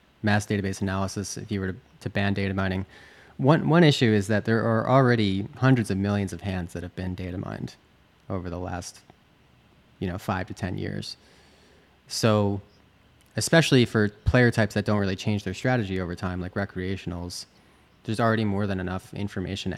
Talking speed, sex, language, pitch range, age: 180 wpm, male, English, 95-115 Hz, 30-49